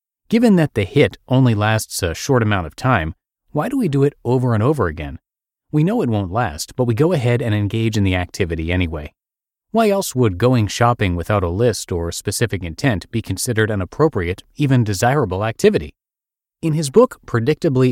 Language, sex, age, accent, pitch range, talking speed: English, male, 30-49, American, 95-125 Hz, 190 wpm